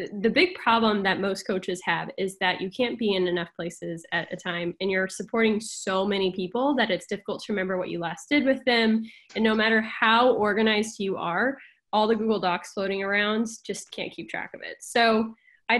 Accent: American